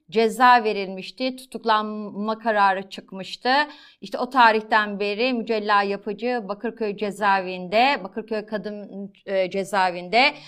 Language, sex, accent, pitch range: Turkish, female, native, 210-260 Hz